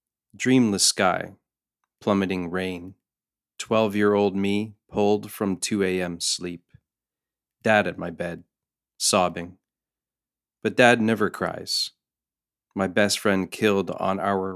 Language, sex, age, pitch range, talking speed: English, male, 30-49, 90-105 Hz, 105 wpm